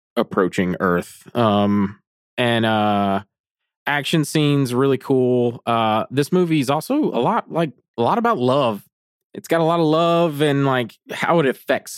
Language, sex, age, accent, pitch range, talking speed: English, male, 20-39, American, 105-130 Hz, 160 wpm